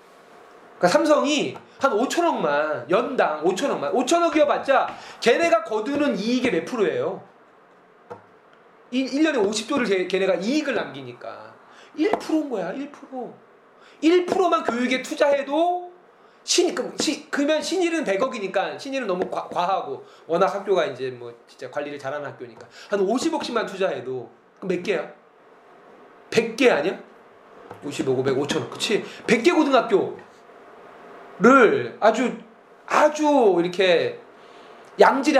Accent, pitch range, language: native, 180-295 Hz, Korean